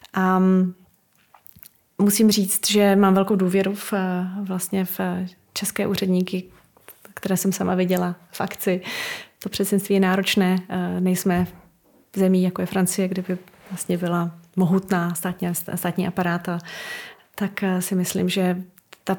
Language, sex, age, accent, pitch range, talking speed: Czech, female, 30-49, native, 180-200 Hz, 125 wpm